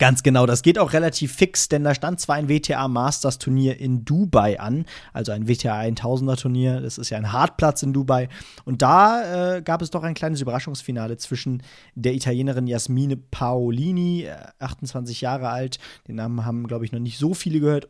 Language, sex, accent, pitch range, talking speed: German, male, German, 120-150 Hz, 180 wpm